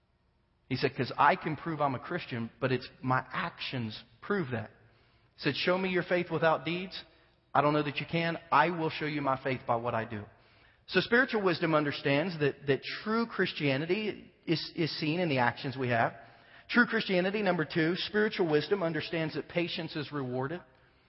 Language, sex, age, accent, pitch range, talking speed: English, male, 40-59, American, 130-165 Hz, 190 wpm